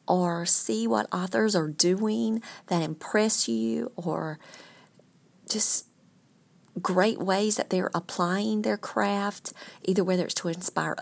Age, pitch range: 40-59, 165-210 Hz